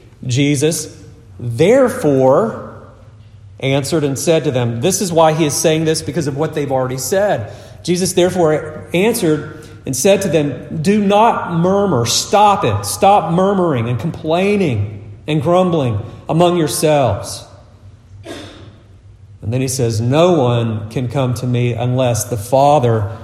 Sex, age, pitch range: male, 40-59, 110-165 Hz